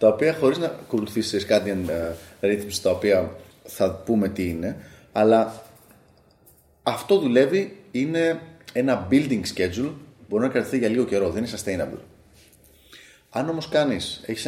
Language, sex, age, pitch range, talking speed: Greek, male, 30-49, 100-135 Hz, 145 wpm